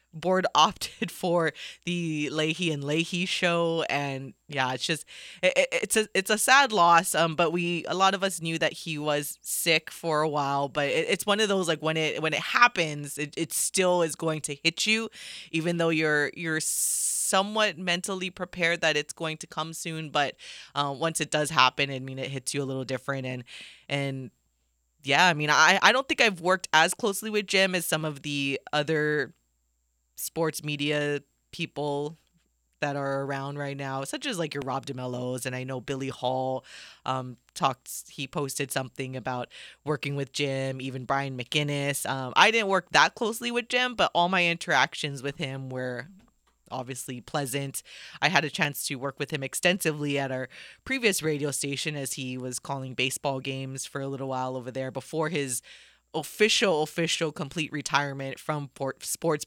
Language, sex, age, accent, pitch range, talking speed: English, female, 20-39, American, 135-170 Hz, 185 wpm